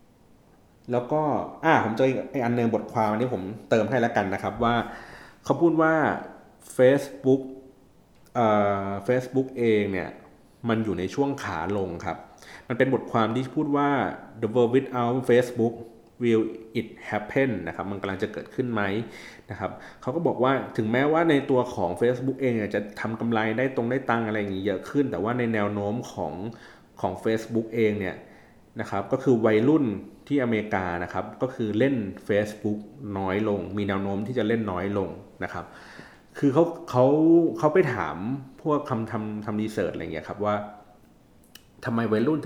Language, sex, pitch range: Thai, male, 105-130 Hz